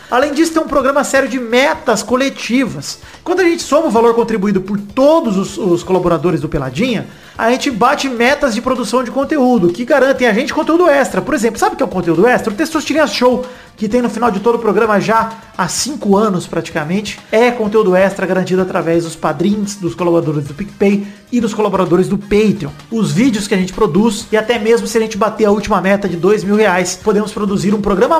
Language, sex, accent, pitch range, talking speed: Portuguese, male, Brazilian, 185-250 Hz, 220 wpm